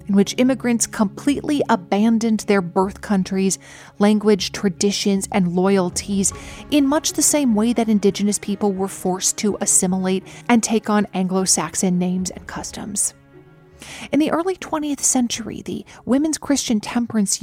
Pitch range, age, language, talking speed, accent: 195-250 Hz, 40-59, English, 140 wpm, American